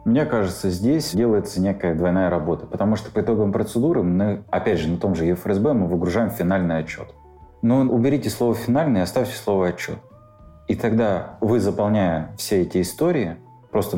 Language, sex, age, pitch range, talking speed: Russian, male, 30-49, 85-110 Hz, 170 wpm